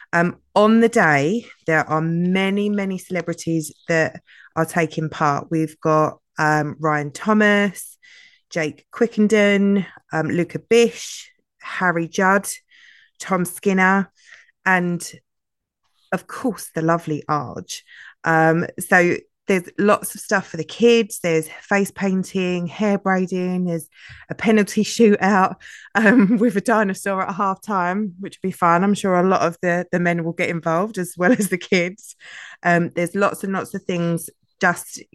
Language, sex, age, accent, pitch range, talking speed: English, female, 20-39, British, 160-195 Hz, 145 wpm